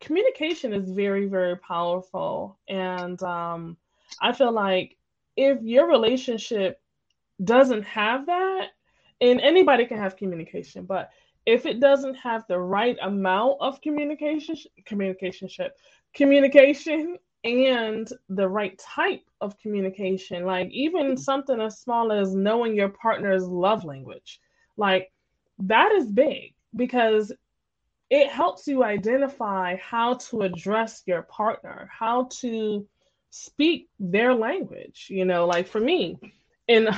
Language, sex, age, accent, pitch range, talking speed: English, female, 20-39, American, 190-255 Hz, 120 wpm